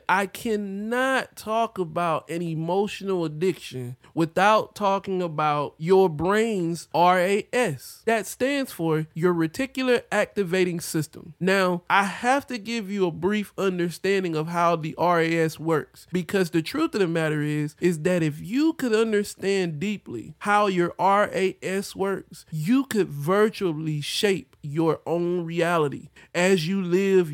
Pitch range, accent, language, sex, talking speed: 160-210 Hz, American, English, male, 135 wpm